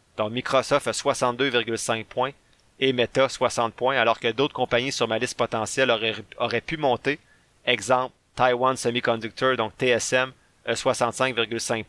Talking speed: 135 wpm